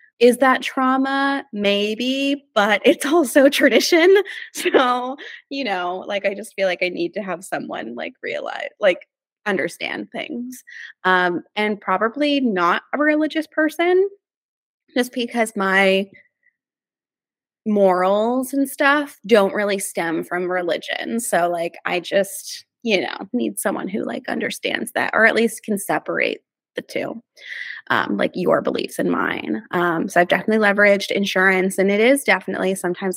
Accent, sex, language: American, female, English